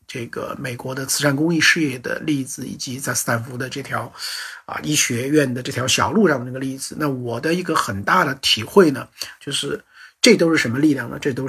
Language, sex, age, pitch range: Chinese, male, 50-69, 130-175 Hz